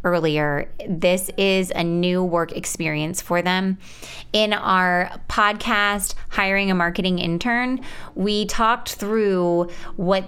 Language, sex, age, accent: English, female, 20-39, American